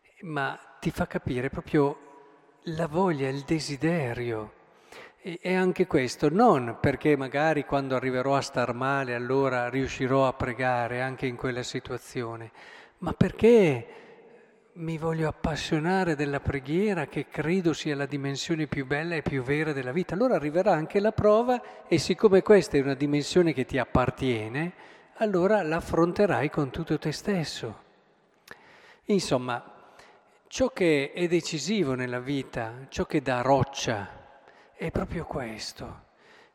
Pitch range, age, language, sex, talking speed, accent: 135-180 Hz, 50-69, Italian, male, 135 wpm, native